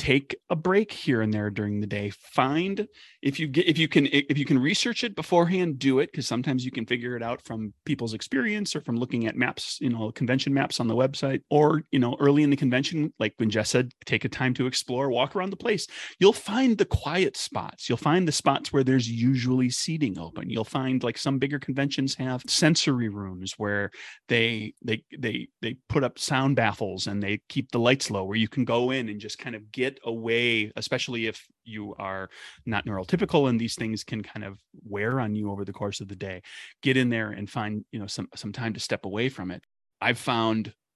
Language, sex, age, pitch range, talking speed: English, male, 30-49, 105-140 Hz, 225 wpm